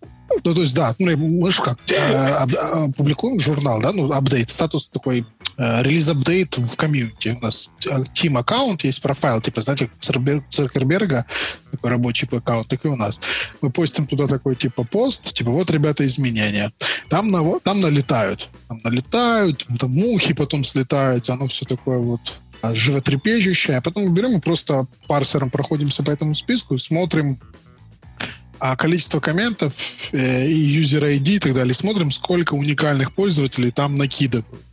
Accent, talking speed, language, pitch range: native, 150 wpm, Ukrainian, 130-165 Hz